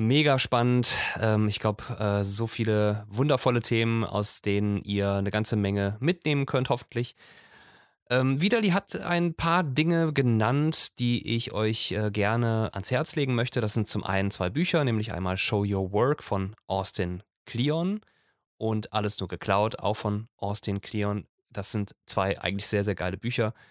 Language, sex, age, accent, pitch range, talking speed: German, male, 20-39, German, 100-130 Hz, 155 wpm